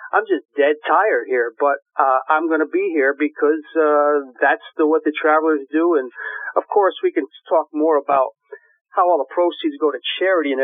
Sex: male